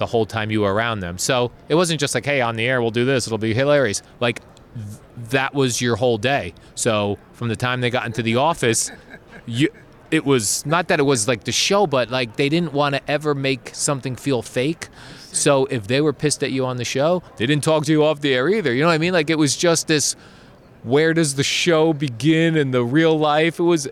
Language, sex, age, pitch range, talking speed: English, male, 20-39, 120-155 Hz, 250 wpm